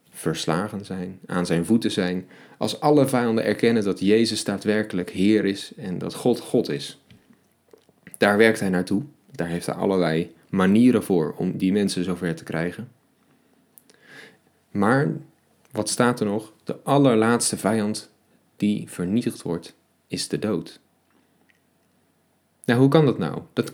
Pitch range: 95-130 Hz